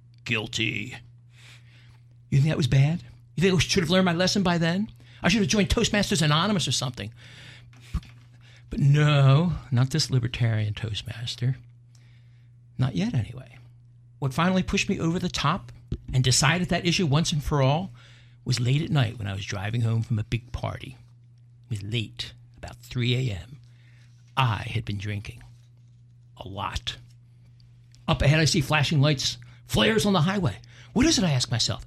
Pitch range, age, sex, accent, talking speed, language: 120-160 Hz, 60-79, male, American, 170 wpm, English